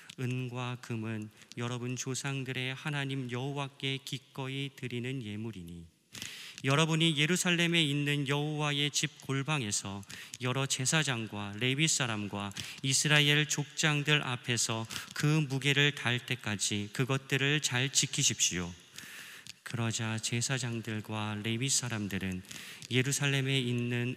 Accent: native